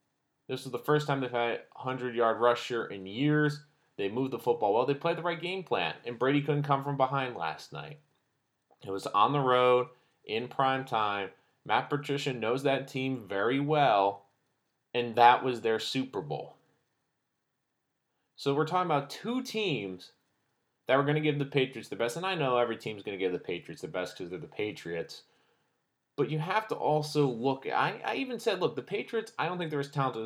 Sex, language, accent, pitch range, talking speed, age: male, English, American, 120-155 Hz, 200 wpm, 30-49